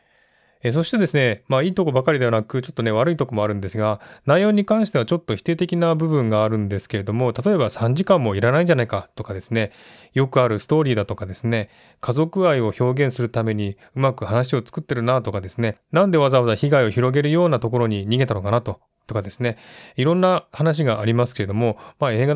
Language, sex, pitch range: Japanese, male, 110-150 Hz